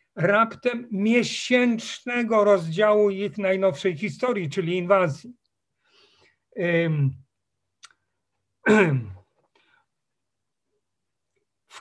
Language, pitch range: Polish, 165-210 Hz